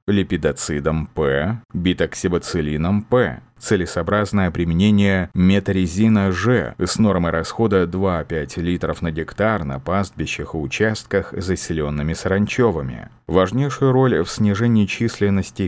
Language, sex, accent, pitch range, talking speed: Russian, male, native, 80-105 Hz, 105 wpm